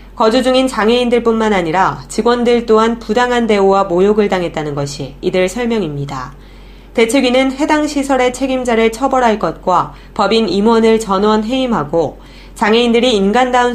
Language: Korean